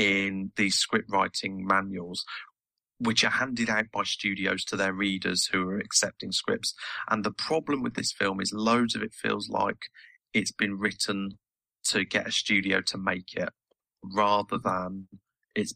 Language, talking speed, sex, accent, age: English, 165 wpm, male, British, 30-49